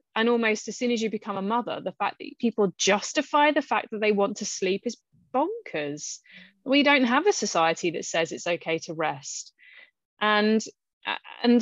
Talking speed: 185 wpm